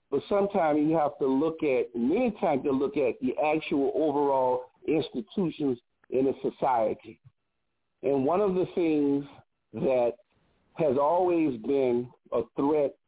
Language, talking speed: English, 140 wpm